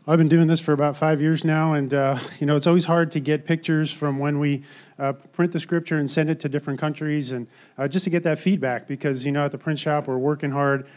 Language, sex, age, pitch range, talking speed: English, male, 30-49, 135-160 Hz, 270 wpm